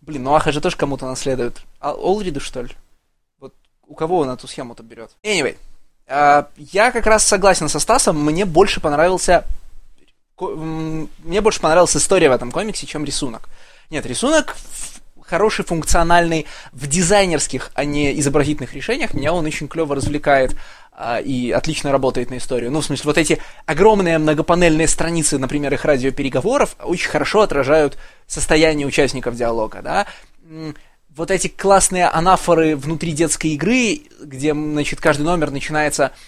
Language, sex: Russian, male